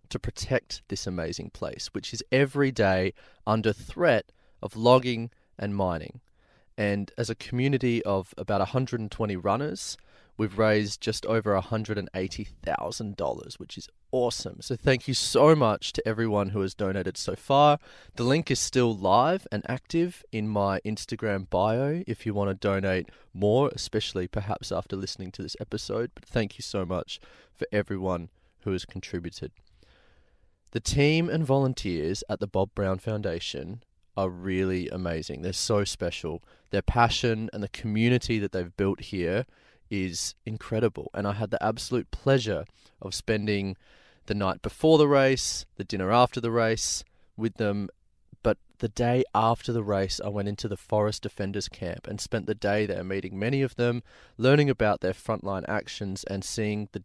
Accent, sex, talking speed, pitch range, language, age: Australian, male, 160 wpm, 95-115 Hz, English, 30-49